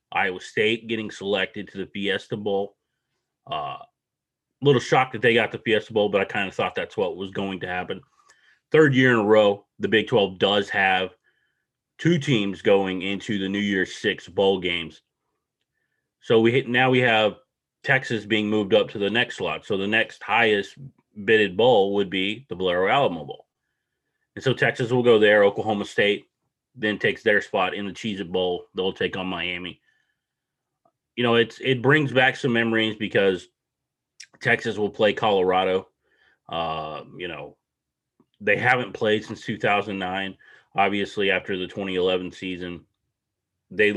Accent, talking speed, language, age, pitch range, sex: American, 165 wpm, English, 30-49, 95-115 Hz, male